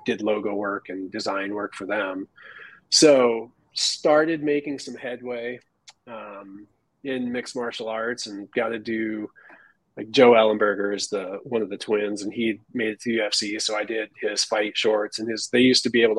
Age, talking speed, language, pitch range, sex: 20-39, 185 wpm, English, 110-135 Hz, male